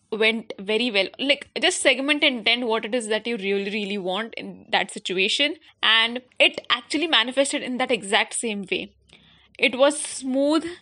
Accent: Indian